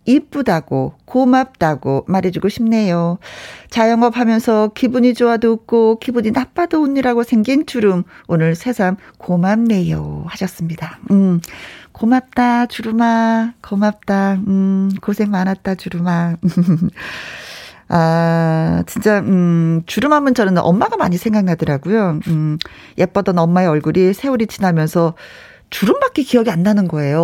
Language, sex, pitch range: Korean, female, 165-215 Hz